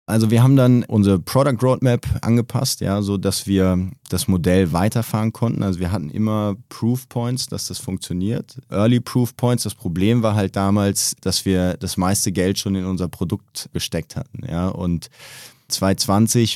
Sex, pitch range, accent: male, 95-115 Hz, German